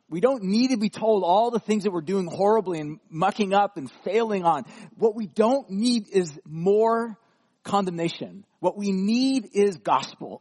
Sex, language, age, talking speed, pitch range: male, English, 40-59, 180 wpm, 145-215 Hz